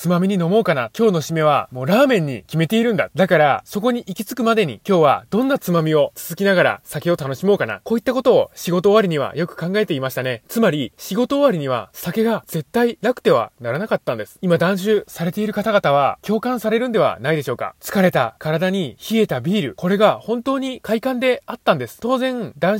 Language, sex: Japanese, male